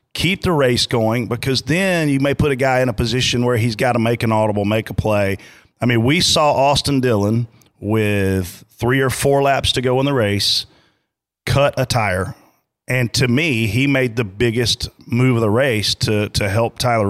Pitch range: 110-135 Hz